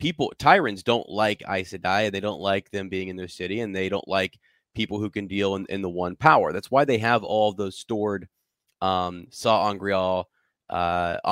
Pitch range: 95-110 Hz